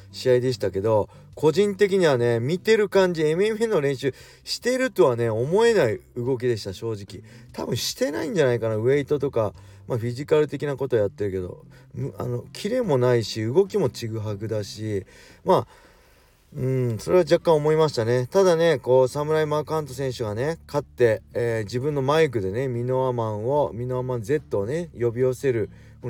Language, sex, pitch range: Japanese, male, 115-160 Hz